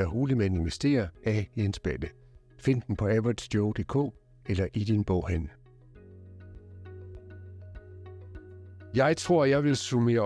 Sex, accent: male, native